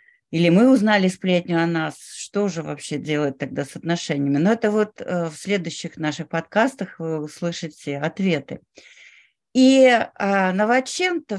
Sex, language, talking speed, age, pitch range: female, Russian, 130 wpm, 40-59, 170-250 Hz